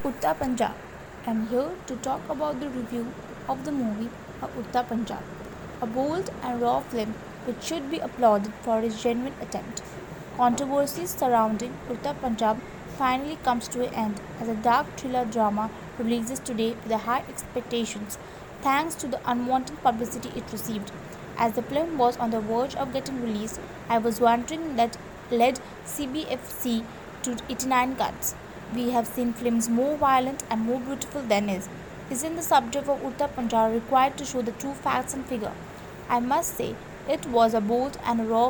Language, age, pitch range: English, 20-39, 230-265 Hz